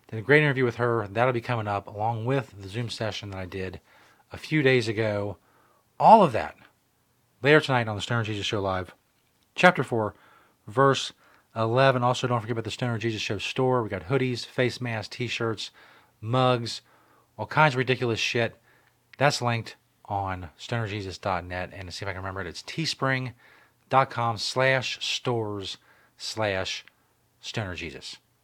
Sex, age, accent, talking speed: male, 40-59, American, 160 wpm